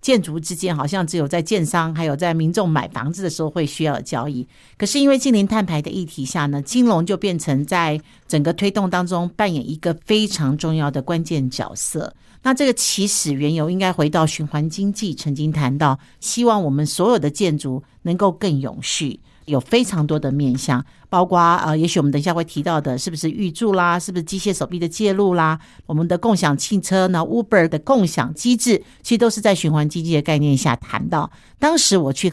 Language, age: Chinese, 50-69